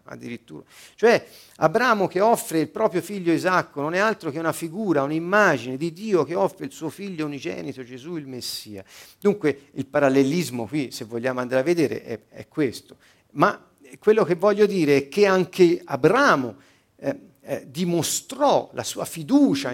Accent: native